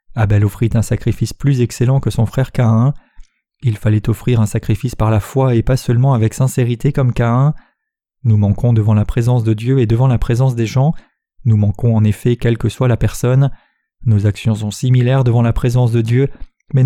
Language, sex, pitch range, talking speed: French, male, 110-135 Hz, 205 wpm